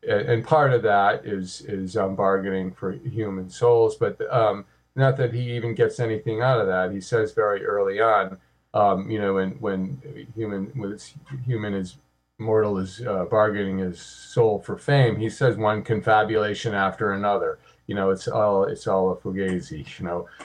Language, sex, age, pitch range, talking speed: English, male, 40-59, 95-125 Hz, 180 wpm